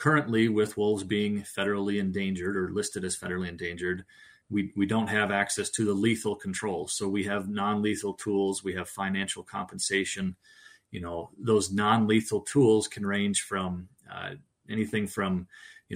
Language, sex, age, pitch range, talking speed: English, male, 30-49, 95-115 Hz, 155 wpm